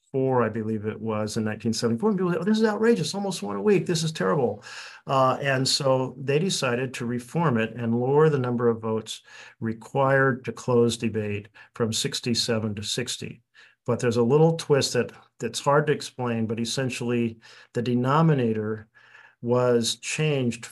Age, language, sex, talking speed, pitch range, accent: 50-69, English, male, 170 wpm, 115-140 Hz, American